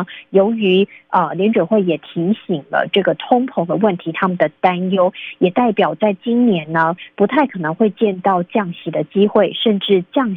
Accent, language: native, Chinese